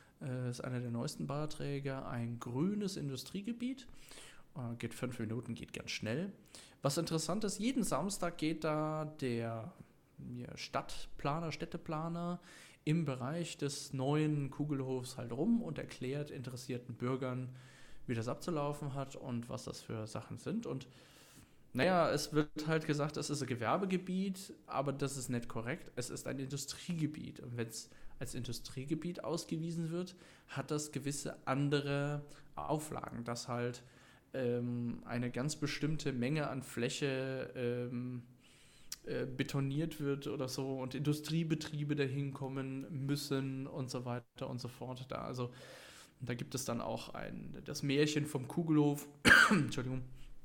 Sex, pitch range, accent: male, 125-150 Hz, German